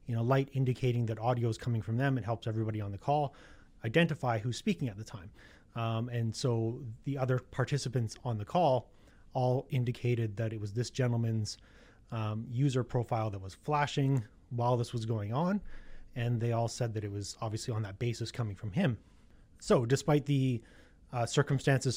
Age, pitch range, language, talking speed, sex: 30-49, 110-130 Hz, English, 185 wpm, male